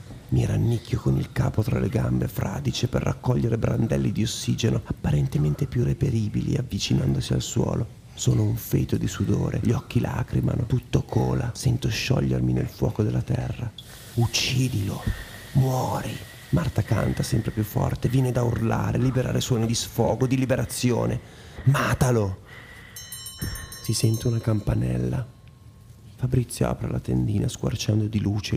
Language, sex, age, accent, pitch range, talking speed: Italian, male, 30-49, native, 110-130 Hz, 135 wpm